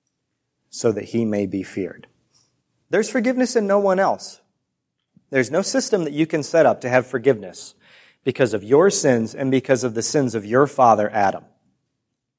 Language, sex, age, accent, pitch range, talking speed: English, male, 30-49, American, 120-160 Hz, 175 wpm